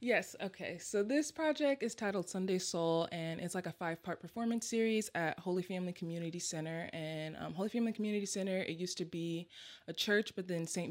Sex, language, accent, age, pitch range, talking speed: female, English, American, 20-39, 160-195 Hz, 200 wpm